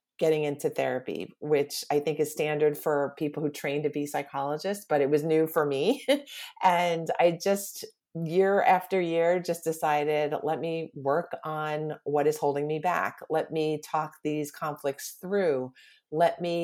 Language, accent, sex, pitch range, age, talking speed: English, American, female, 150-185 Hz, 40-59, 165 wpm